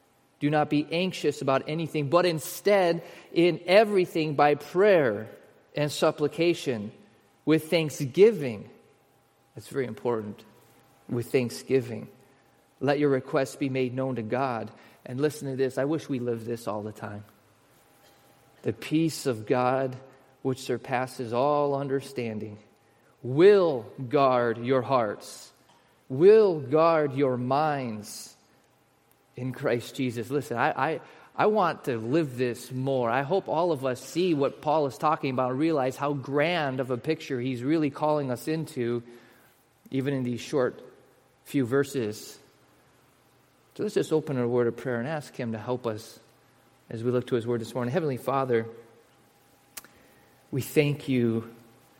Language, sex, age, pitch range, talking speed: English, male, 30-49, 120-150 Hz, 145 wpm